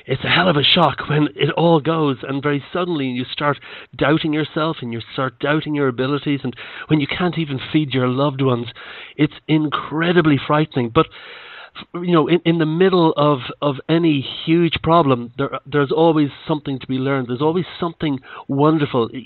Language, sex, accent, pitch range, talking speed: English, male, Irish, 135-165 Hz, 180 wpm